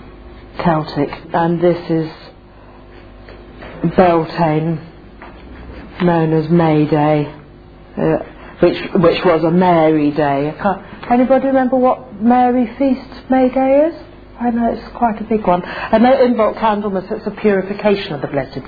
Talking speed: 130 wpm